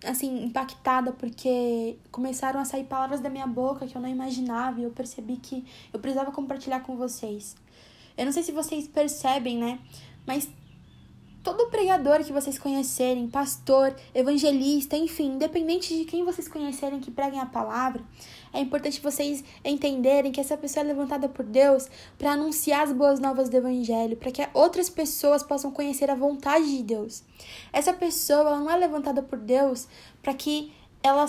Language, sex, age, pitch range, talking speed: Portuguese, female, 10-29, 260-300 Hz, 165 wpm